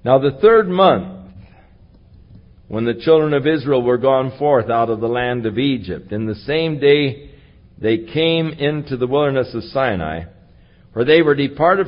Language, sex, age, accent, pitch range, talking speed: English, male, 60-79, American, 110-170 Hz, 165 wpm